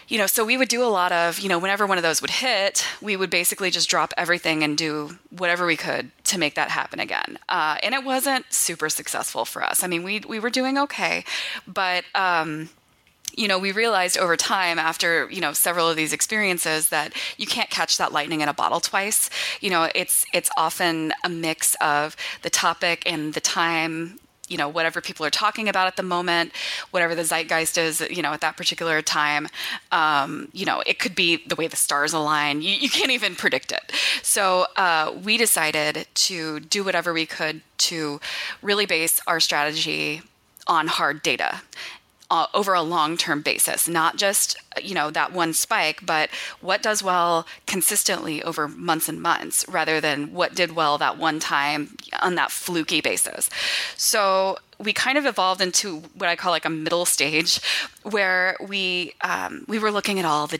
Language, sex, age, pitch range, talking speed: English, female, 20-39, 160-195 Hz, 195 wpm